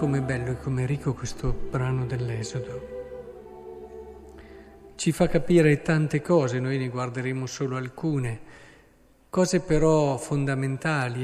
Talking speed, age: 110 wpm, 40-59